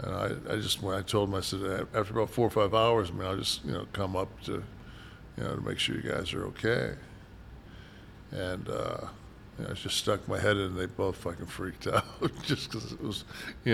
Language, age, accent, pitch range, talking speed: English, 60-79, American, 95-110 Hz, 235 wpm